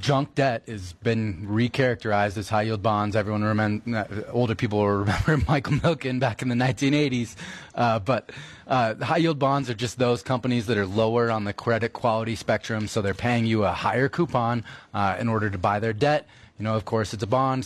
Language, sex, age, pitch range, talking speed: English, male, 20-39, 110-135 Hz, 205 wpm